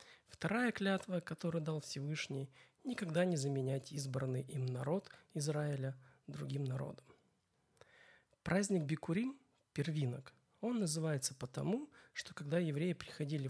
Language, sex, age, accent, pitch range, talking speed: Russian, male, 40-59, native, 135-170 Hz, 115 wpm